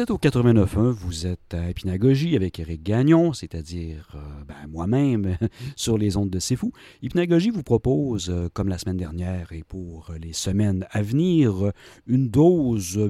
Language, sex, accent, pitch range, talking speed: French, male, French, 90-130 Hz, 150 wpm